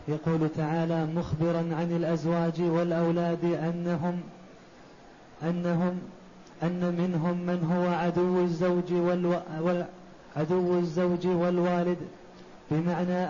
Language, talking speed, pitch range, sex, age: Arabic, 70 wpm, 175-190 Hz, male, 20-39